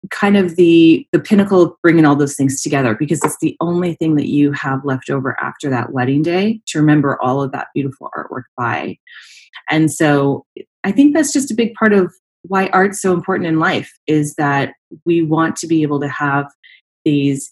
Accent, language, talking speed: American, English, 200 wpm